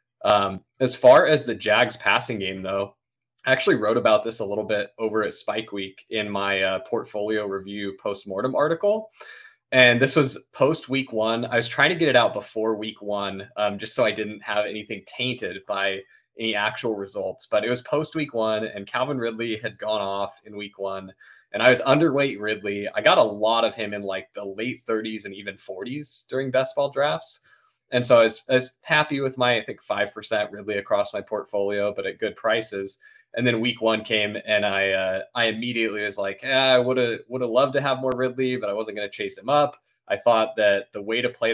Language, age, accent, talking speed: English, 20-39, American, 215 wpm